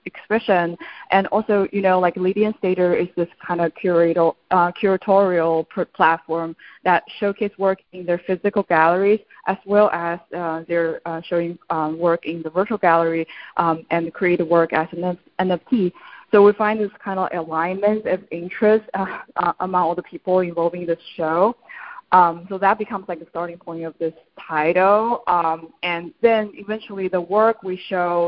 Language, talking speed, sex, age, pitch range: English, 170 wpm, female, 20-39, 170-195 Hz